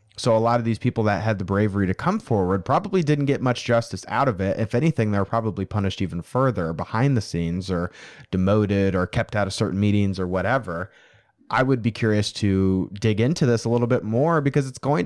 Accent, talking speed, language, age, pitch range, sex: American, 225 wpm, English, 30-49, 95-120 Hz, male